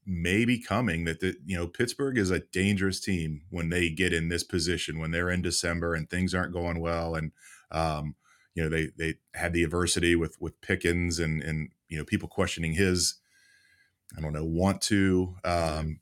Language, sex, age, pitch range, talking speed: English, male, 20-39, 80-95 Hz, 190 wpm